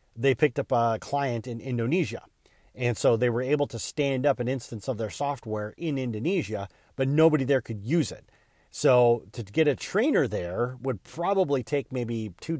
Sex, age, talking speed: male, 40-59, 185 wpm